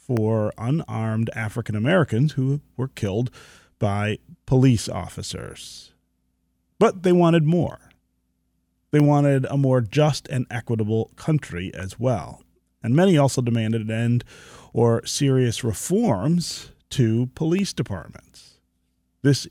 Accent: American